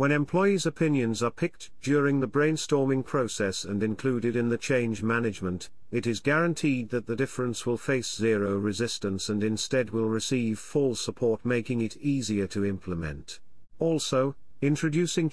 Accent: British